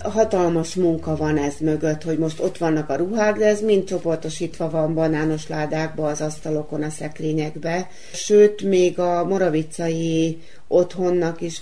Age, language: 30-49, Hungarian